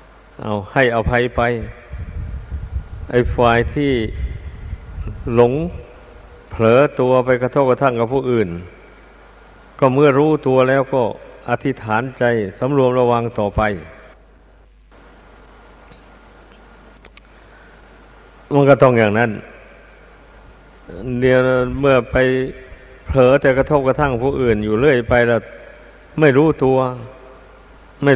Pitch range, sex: 110-135 Hz, male